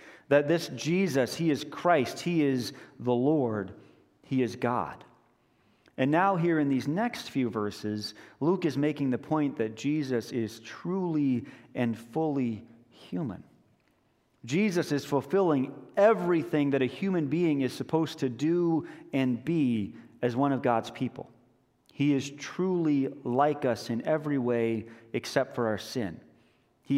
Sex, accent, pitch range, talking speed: male, American, 125-160 Hz, 145 wpm